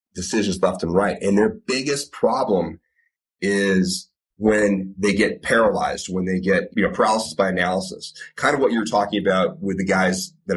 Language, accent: English, American